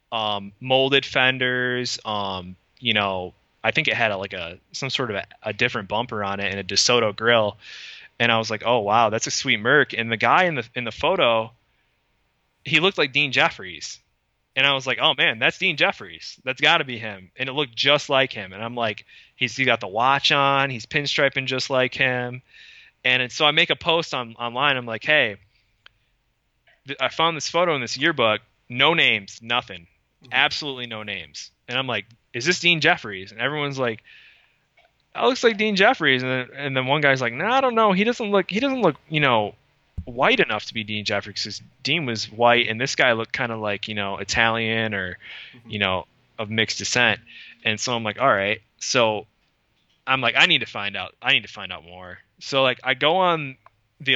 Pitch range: 105-140 Hz